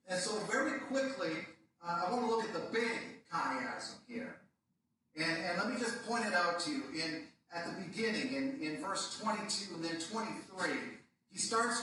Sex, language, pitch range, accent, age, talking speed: male, English, 165-230 Hz, American, 40-59, 190 wpm